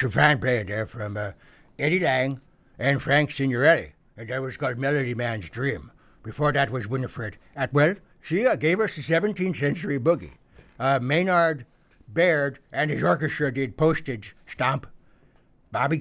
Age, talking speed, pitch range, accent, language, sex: 60-79, 155 wpm, 125-155 Hz, American, English, male